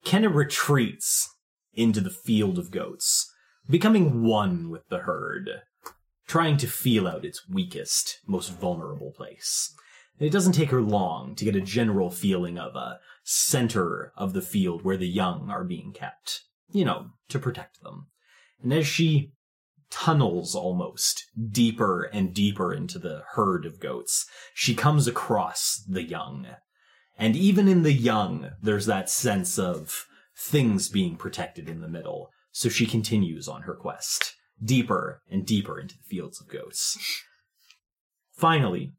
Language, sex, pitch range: English, male, 100-160 Hz